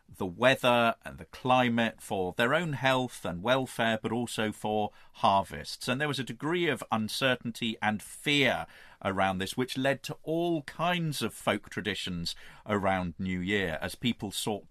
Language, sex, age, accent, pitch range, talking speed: English, male, 40-59, British, 95-125 Hz, 165 wpm